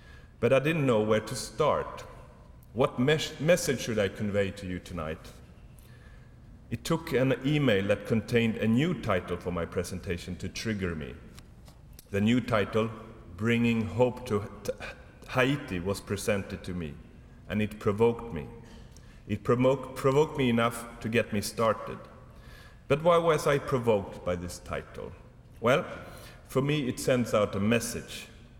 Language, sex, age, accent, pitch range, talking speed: English, male, 40-59, Swedish, 100-120 Hz, 145 wpm